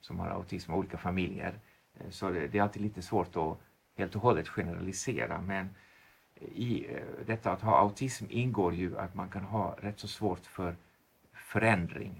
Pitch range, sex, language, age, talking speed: 90-105 Hz, male, Swedish, 50-69, 165 wpm